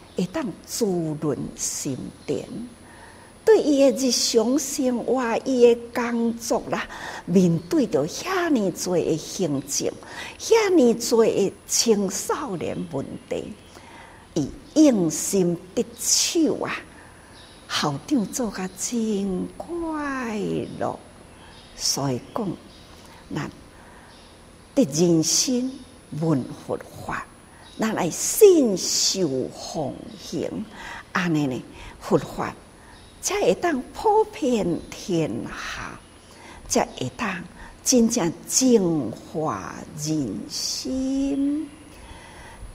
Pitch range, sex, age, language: 190-280 Hz, female, 60-79, Chinese